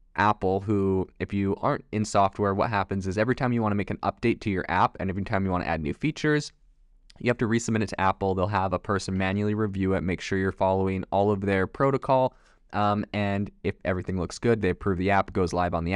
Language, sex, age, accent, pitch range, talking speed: English, male, 20-39, American, 95-110 Hz, 250 wpm